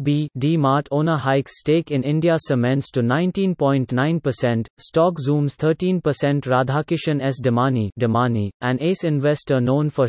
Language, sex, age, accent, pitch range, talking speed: English, male, 30-49, Indian, 130-160 Hz, 135 wpm